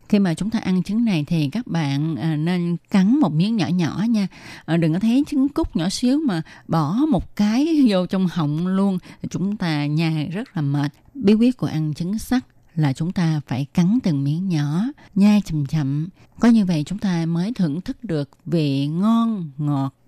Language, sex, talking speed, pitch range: Vietnamese, female, 200 wpm, 150-200 Hz